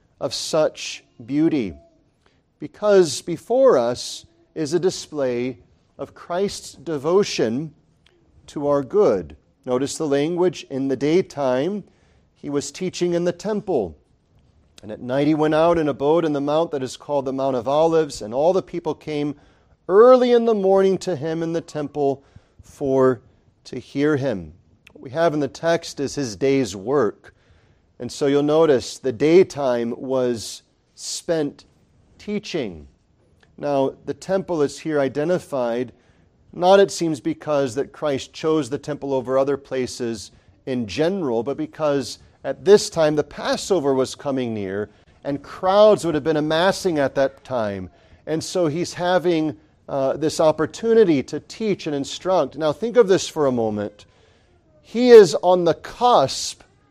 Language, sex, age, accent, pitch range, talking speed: English, male, 40-59, American, 125-170 Hz, 150 wpm